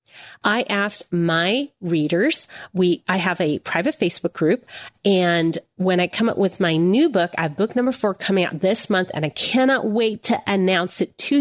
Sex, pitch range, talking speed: female, 170-225 Hz, 195 wpm